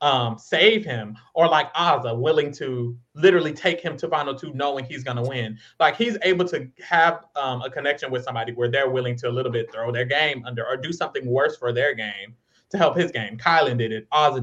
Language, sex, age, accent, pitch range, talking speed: English, male, 20-39, American, 120-175 Hz, 225 wpm